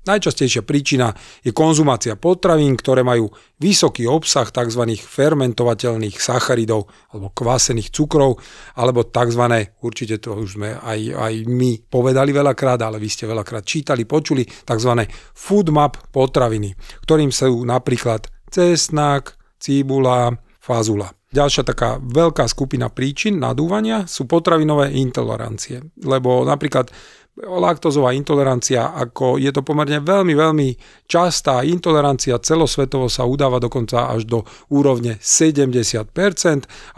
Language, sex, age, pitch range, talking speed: Slovak, male, 40-59, 115-150 Hz, 115 wpm